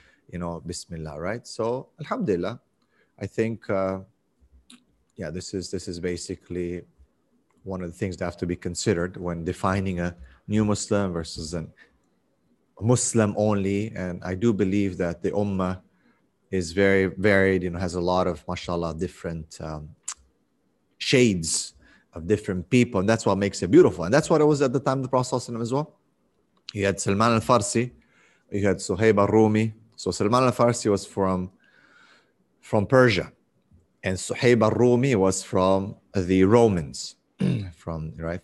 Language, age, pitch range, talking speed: English, 30-49, 90-105 Hz, 160 wpm